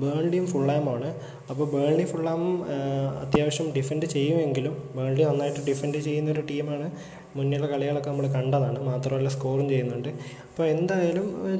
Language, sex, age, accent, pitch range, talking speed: Malayalam, male, 20-39, native, 130-150 Hz, 135 wpm